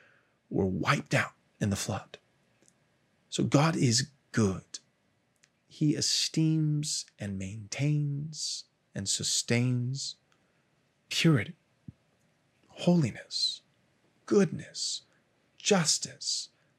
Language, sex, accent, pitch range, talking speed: English, male, American, 120-155 Hz, 70 wpm